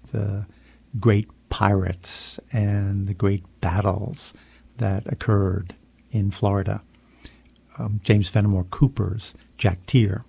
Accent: American